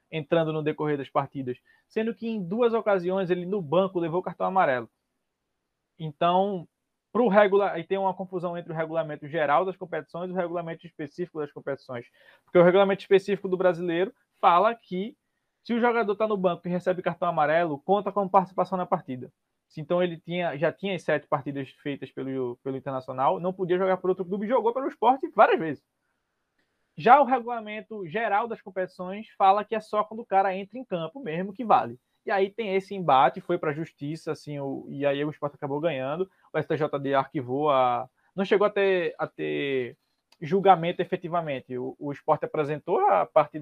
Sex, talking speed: male, 190 wpm